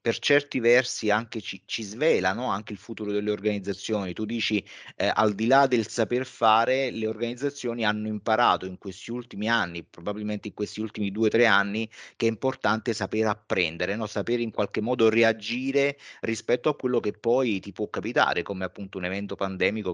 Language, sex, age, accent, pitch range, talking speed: Italian, male, 30-49, native, 100-120 Hz, 185 wpm